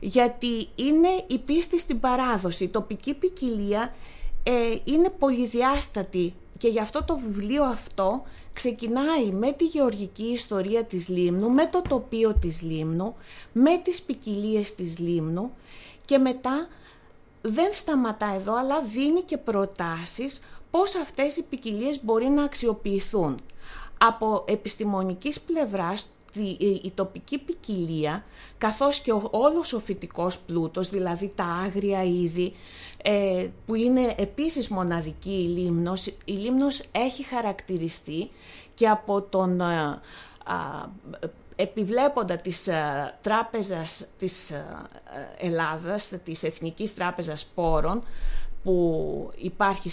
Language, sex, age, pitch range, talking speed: Greek, female, 30-49, 185-260 Hz, 110 wpm